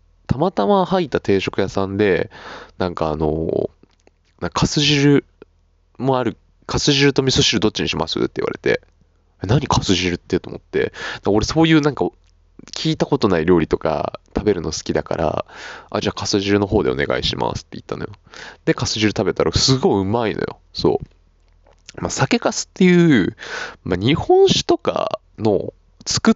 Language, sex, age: Japanese, male, 20-39